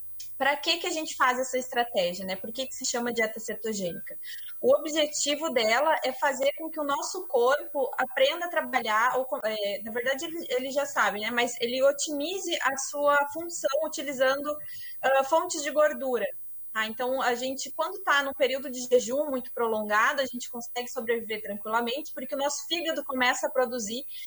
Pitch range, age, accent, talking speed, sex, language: 235-290 Hz, 20-39, Brazilian, 170 wpm, female, Portuguese